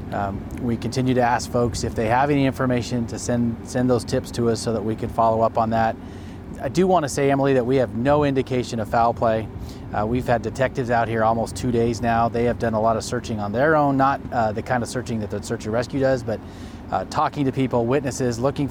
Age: 30-49